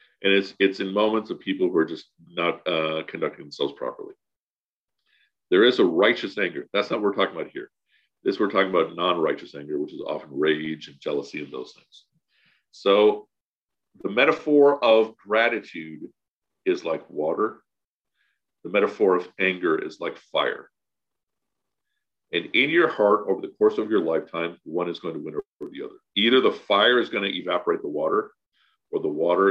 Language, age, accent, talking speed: English, 50-69, American, 175 wpm